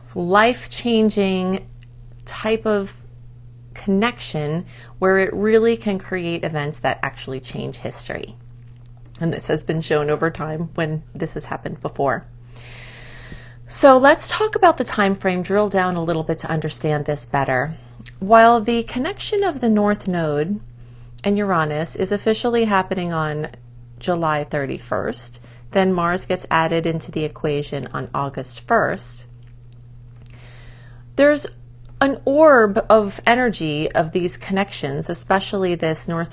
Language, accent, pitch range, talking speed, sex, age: English, American, 120-195 Hz, 130 wpm, female, 30-49